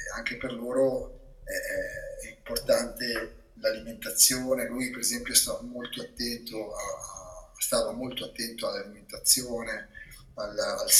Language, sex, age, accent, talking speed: Italian, male, 30-49, native, 85 wpm